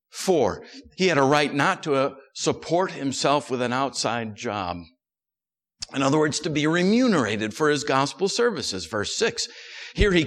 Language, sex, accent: English, male, American